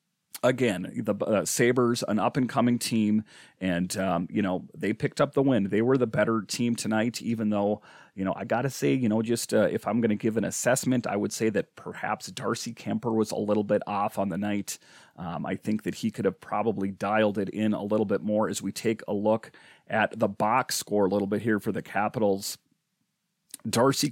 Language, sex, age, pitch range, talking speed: English, male, 40-59, 105-125 Hz, 220 wpm